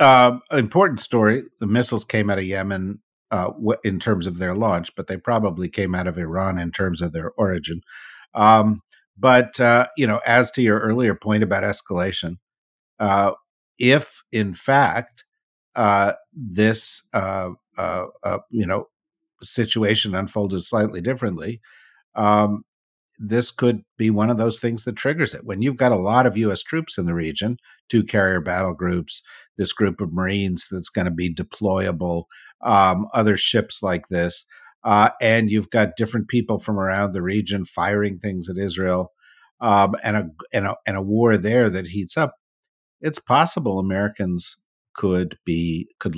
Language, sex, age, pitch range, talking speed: English, male, 50-69, 95-115 Hz, 165 wpm